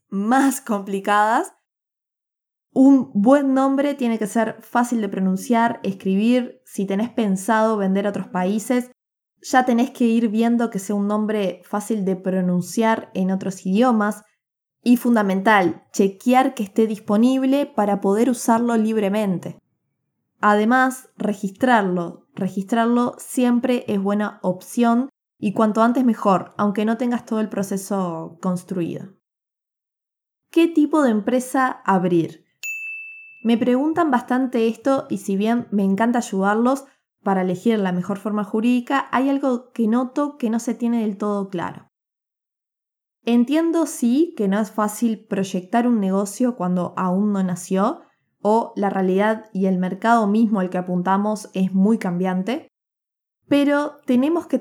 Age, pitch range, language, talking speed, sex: 20-39, 195-245 Hz, Spanish, 135 wpm, female